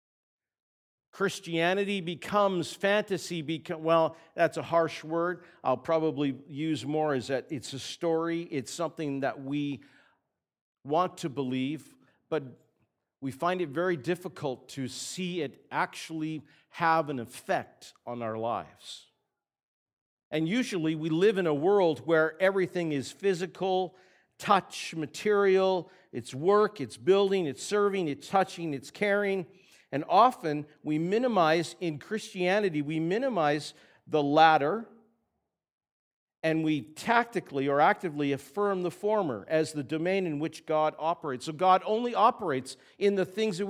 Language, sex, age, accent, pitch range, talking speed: English, male, 50-69, American, 150-200 Hz, 135 wpm